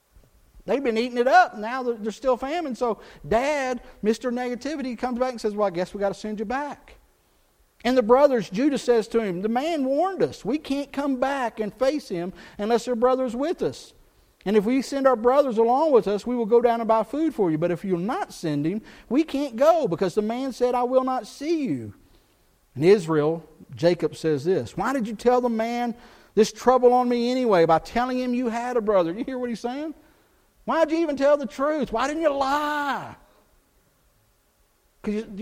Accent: American